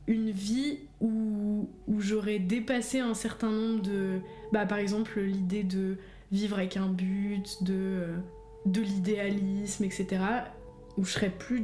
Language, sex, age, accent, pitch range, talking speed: French, female, 20-39, French, 185-210 Hz, 140 wpm